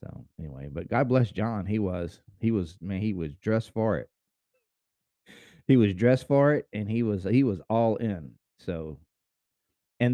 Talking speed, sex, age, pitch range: 180 wpm, male, 30-49, 85-115 Hz